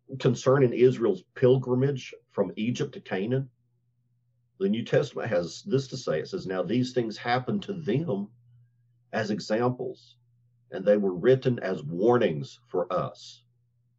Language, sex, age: English, male, 50-69